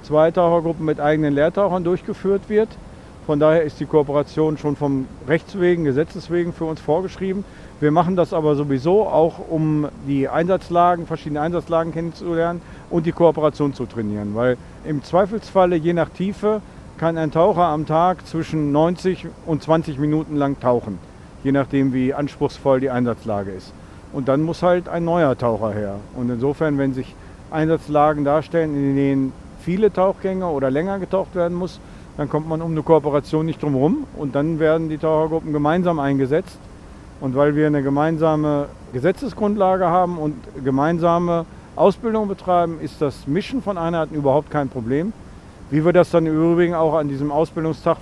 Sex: male